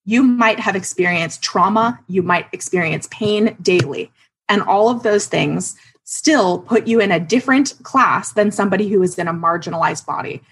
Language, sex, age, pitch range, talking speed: English, female, 20-39, 170-225 Hz, 170 wpm